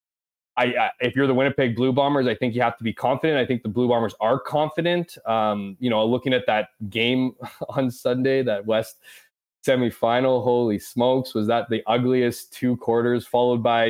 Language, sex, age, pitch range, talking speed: English, male, 20-39, 115-140 Hz, 190 wpm